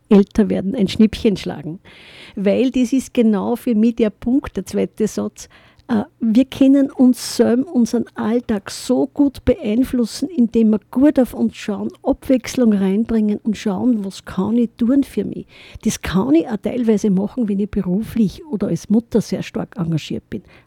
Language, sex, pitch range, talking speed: German, female, 210-255 Hz, 170 wpm